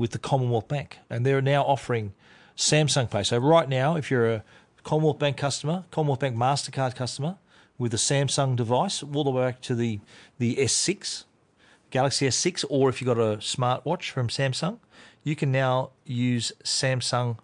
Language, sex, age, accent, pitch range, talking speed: English, male, 40-59, Australian, 120-150 Hz, 170 wpm